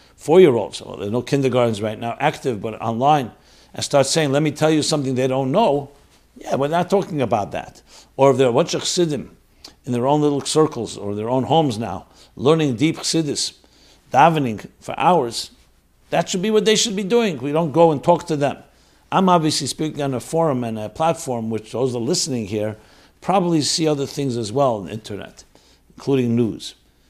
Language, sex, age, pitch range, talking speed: English, male, 60-79, 120-165 Hz, 195 wpm